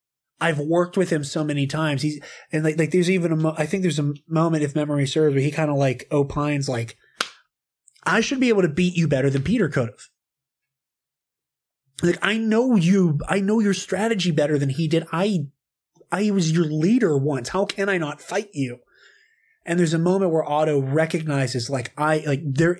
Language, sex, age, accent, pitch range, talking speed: English, male, 20-39, American, 130-165 Hz, 210 wpm